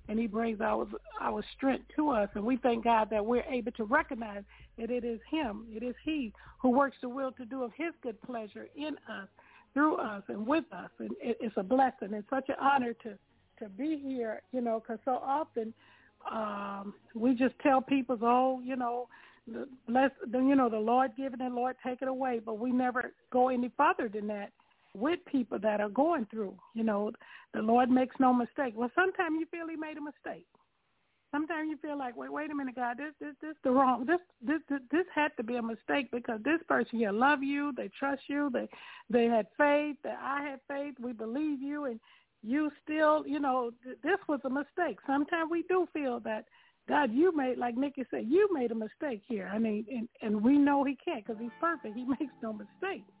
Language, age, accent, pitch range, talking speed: English, 60-79, American, 230-290 Hz, 215 wpm